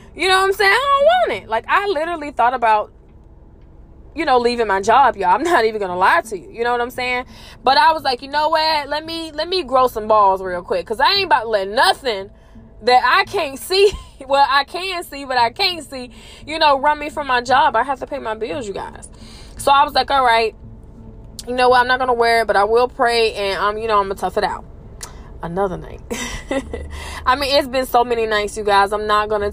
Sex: female